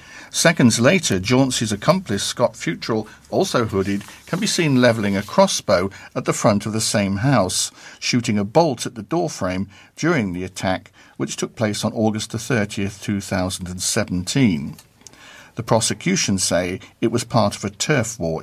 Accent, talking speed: British, 155 wpm